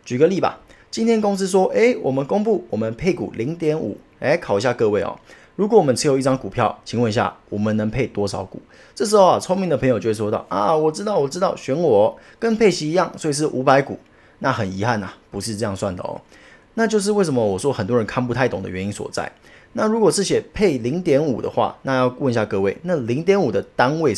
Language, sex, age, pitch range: Chinese, male, 30-49, 105-155 Hz